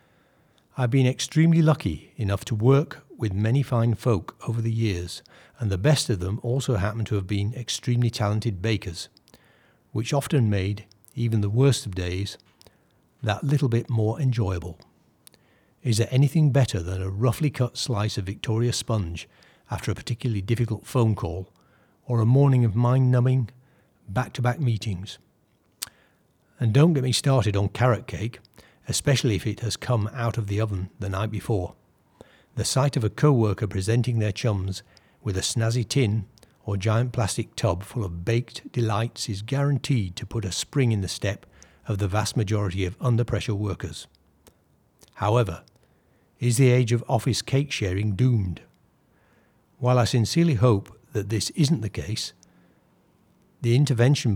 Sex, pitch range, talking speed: male, 100-125 Hz, 155 wpm